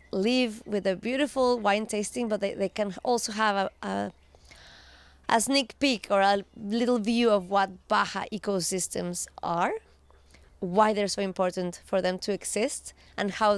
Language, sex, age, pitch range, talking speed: English, female, 20-39, 185-225 Hz, 155 wpm